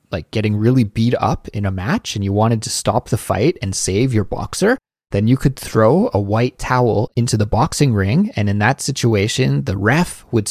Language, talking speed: English, 210 wpm